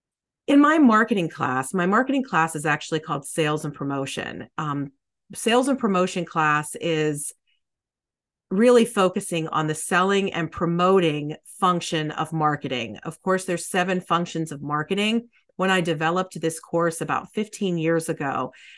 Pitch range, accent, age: 150-185 Hz, American, 40-59